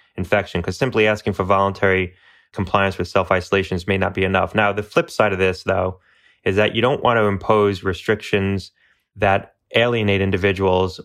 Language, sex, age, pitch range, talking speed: English, male, 20-39, 95-105 Hz, 175 wpm